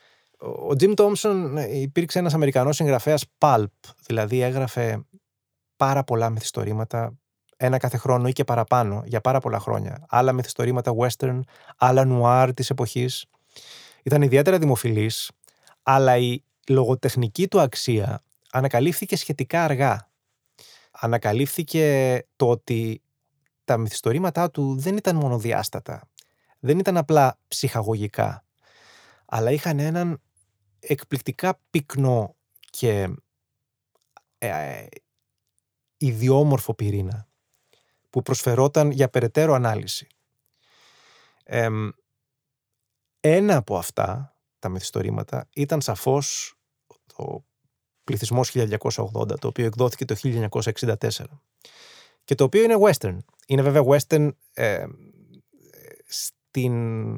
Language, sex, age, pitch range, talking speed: Greek, male, 20-39, 115-145 Hz, 100 wpm